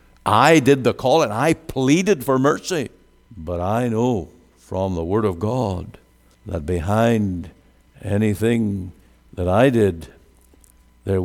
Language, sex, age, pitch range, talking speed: English, male, 60-79, 95-125 Hz, 130 wpm